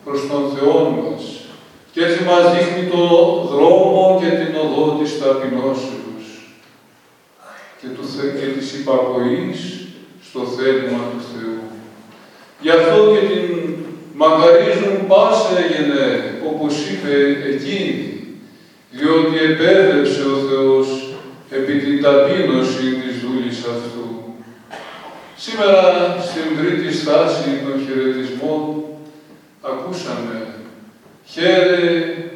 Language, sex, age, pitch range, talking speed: Greek, male, 40-59, 135-170 Hz, 95 wpm